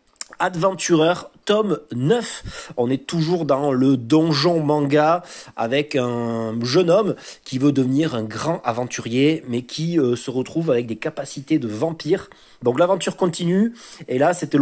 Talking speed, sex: 145 wpm, male